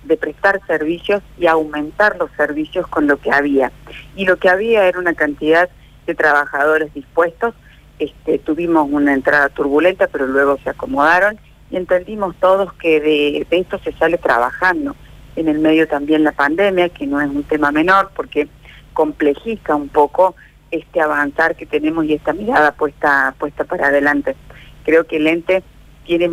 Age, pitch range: 50-69, 145-180 Hz